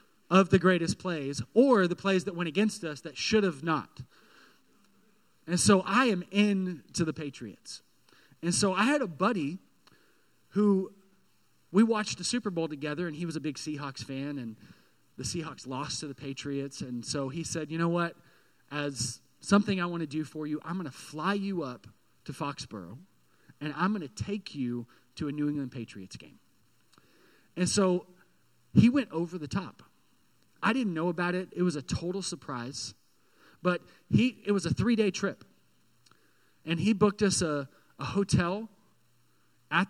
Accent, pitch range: American, 145-195 Hz